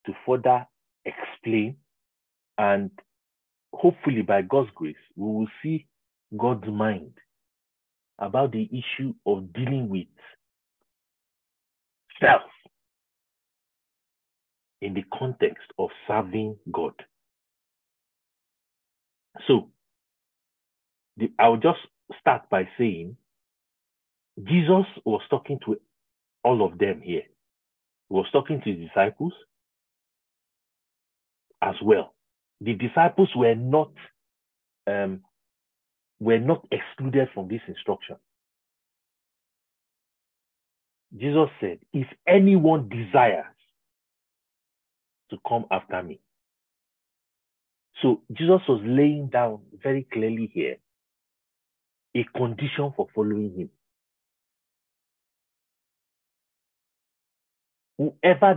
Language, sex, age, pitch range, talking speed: English, male, 50-69, 95-140 Hz, 85 wpm